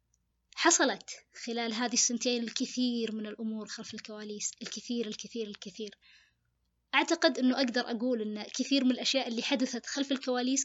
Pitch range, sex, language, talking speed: 230-260 Hz, female, Arabic, 135 wpm